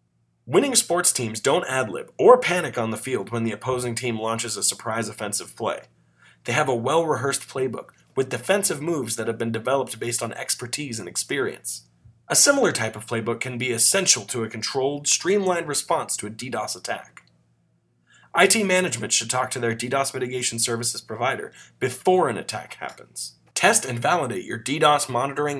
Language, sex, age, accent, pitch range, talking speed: English, male, 30-49, American, 110-145 Hz, 170 wpm